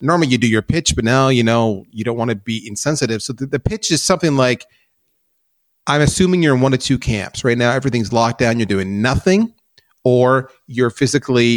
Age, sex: 30-49, male